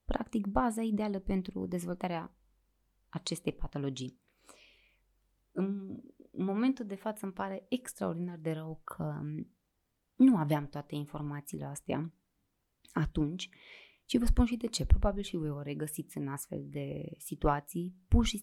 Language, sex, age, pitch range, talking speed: Romanian, female, 20-39, 150-205 Hz, 130 wpm